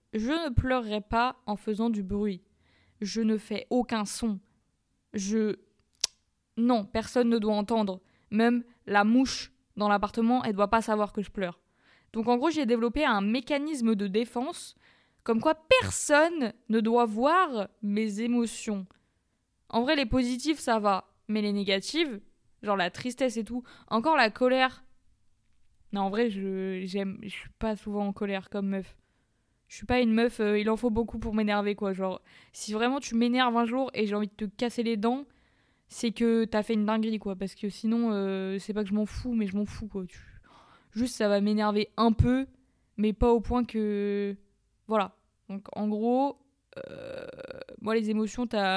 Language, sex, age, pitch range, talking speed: French, female, 20-39, 205-240 Hz, 185 wpm